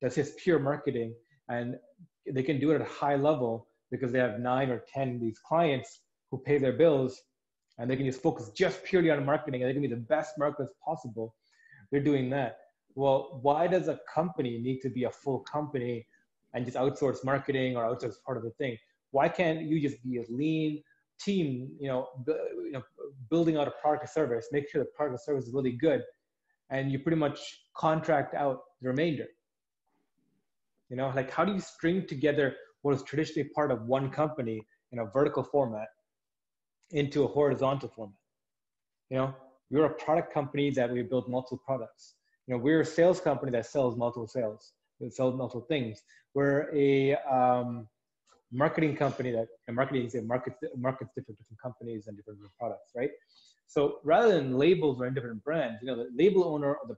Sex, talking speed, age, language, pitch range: male, 195 wpm, 30-49, English, 125-150 Hz